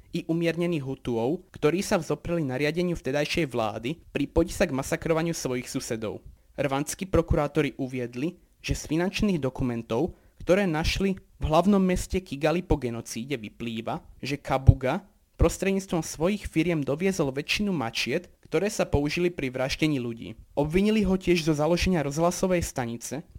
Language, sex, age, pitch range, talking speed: Slovak, male, 30-49, 135-175 Hz, 135 wpm